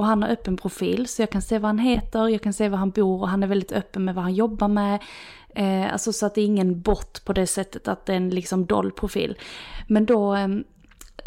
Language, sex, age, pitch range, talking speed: Swedish, female, 20-39, 190-215 Hz, 255 wpm